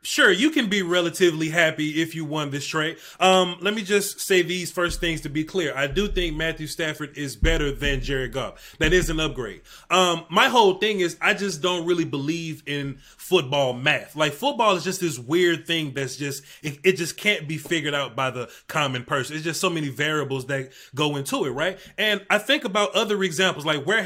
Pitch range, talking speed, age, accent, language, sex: 155-205 Hz, 215 wpm, 30-49, American, English, male